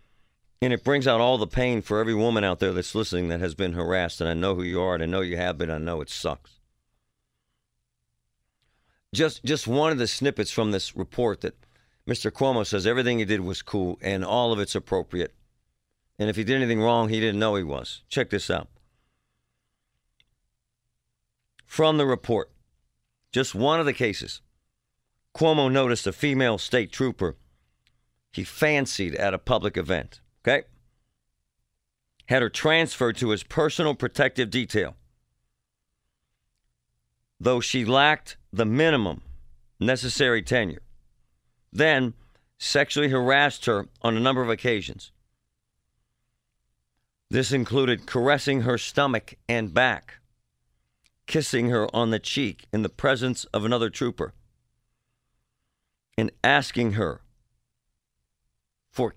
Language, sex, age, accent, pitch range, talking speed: English, male, 50-69, American, 90-130 Hz, 140 wpm